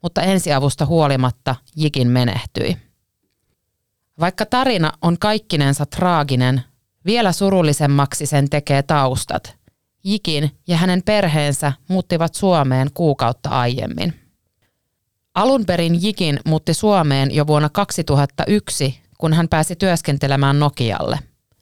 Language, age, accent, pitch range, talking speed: Finnish, 30-49, native, 130-170 Hz, 100 wpm